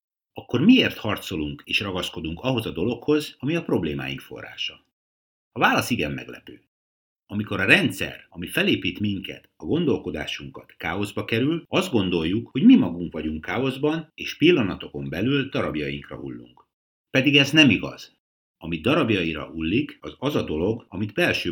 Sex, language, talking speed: male, Hungarian, 140 wpm